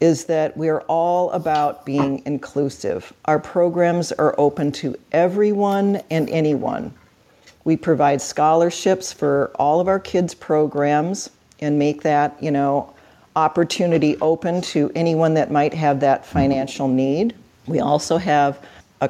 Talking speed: 140 wpm